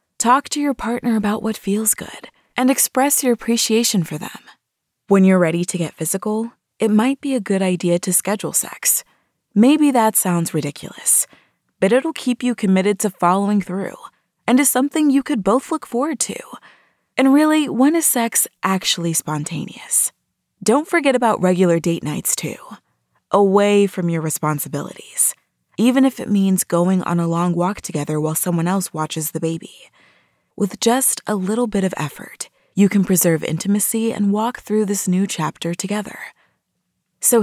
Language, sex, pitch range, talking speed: English, female, 175-235 Hz, 165 wpm